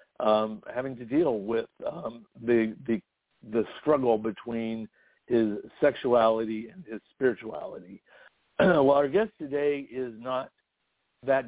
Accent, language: American, English